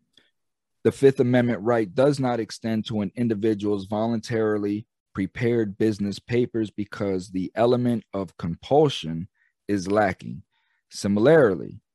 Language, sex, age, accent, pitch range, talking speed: English, male, 40-59, American, 95-120 Hz, 110 wpm